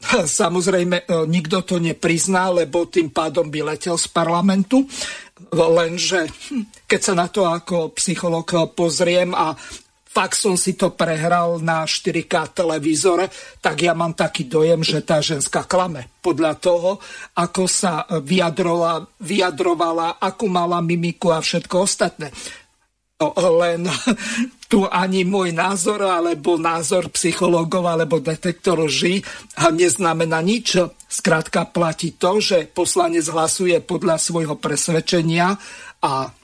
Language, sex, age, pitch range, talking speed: Slovak, male, 50-69, 165-190 Hz, 115 wpm